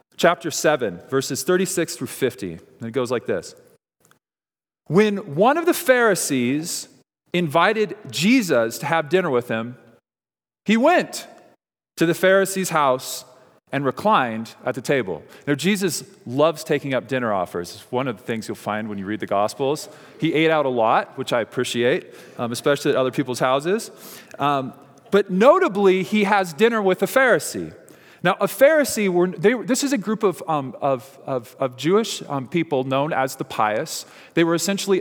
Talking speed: 170 wpm